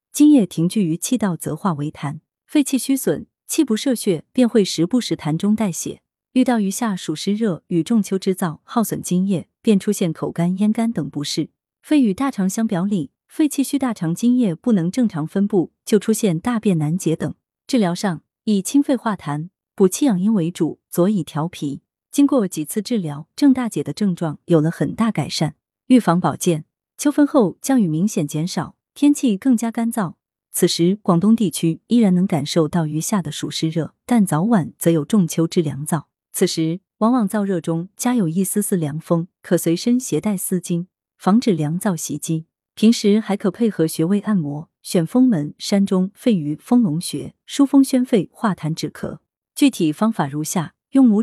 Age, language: 30-49, Chinese